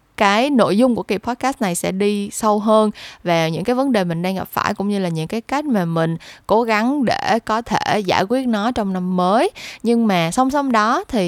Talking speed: 240 wpm